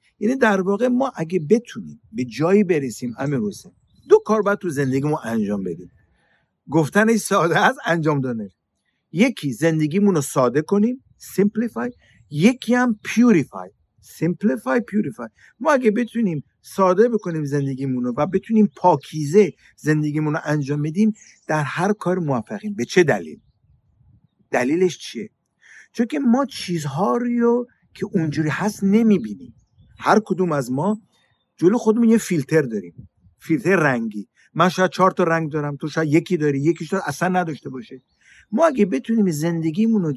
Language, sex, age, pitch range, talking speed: Persian, male, 50-69, 150-215 Hz, 140 wpm